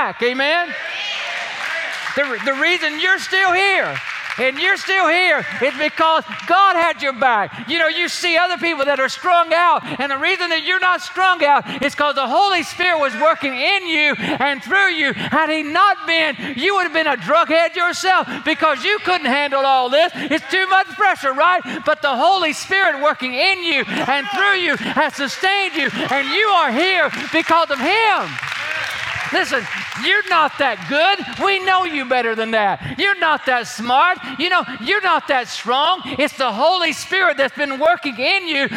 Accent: American